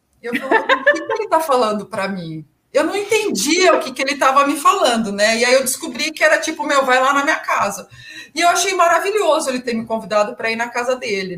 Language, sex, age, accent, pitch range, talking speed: Portuguese, female, 40-59, Brazilian, 215-305 Hz, 235 wpm